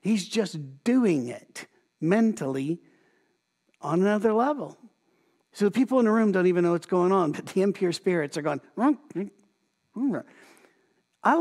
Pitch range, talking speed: 165-220 Hz, 140 wpm